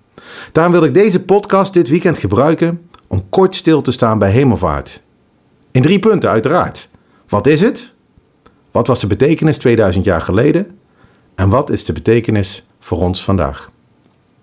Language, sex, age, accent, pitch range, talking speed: Dutch, male, 50-69, Dutch, 105-165 Hz, 155 wpm